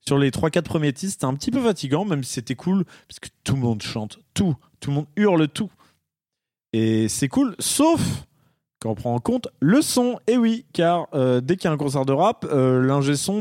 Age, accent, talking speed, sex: 20-39, French, 235 wpm, male